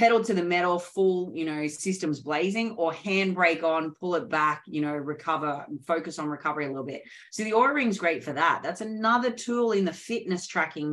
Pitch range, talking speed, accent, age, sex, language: 155-190 Hz, 210 wpm, Australian, 30-49, female, English